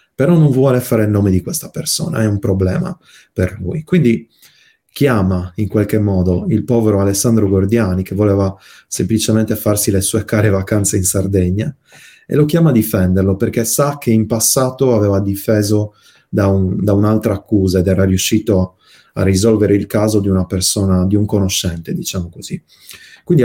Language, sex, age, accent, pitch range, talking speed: Italian, male, 30-49, native, 95-115 Hz, 170 wpm